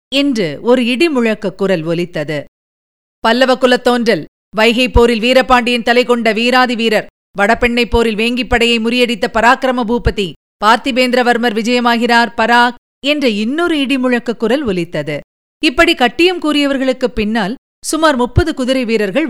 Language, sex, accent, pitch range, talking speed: Tamil, female, native, 205-280 Hz, 105 wpm